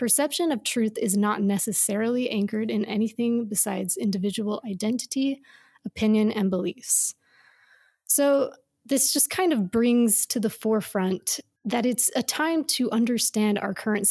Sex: female